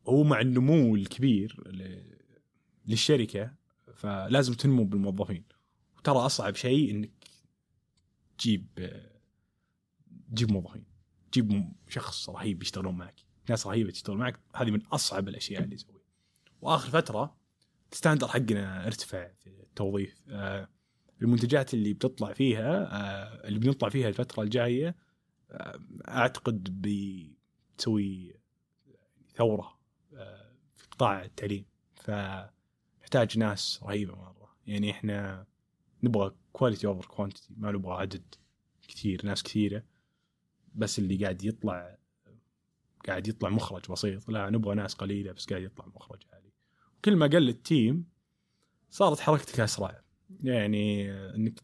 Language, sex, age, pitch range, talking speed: Arabic, male, 30-49, 100-125 Hz, 110 wpm